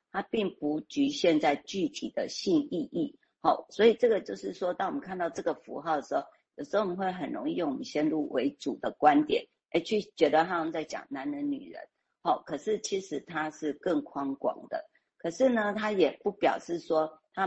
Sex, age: female, 50-69